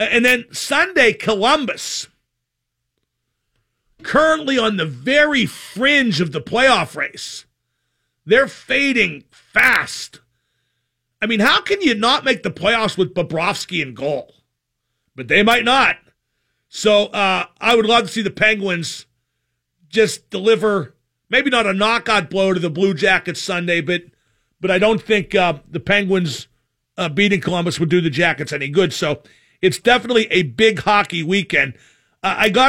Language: English